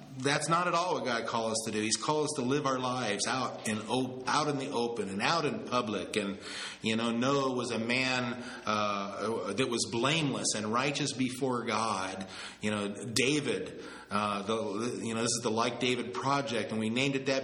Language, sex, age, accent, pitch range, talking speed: English, male, 40-59, American, 120-145 Hz, 205 wpm